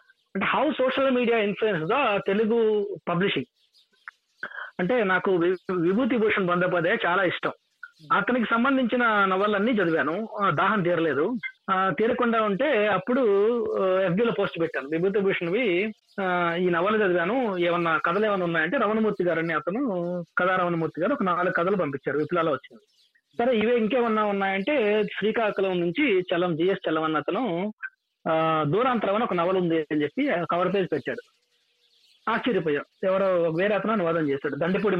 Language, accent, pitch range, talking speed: Telugu, native, 170-225 Hz, 130 wpm